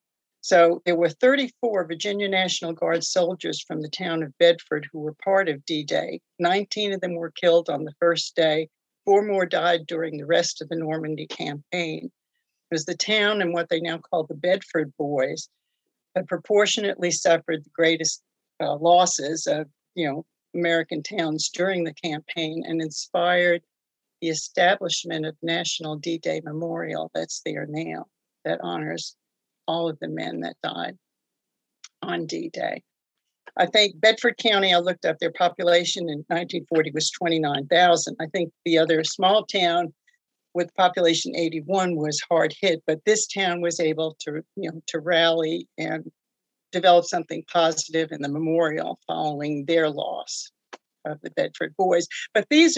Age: 60-79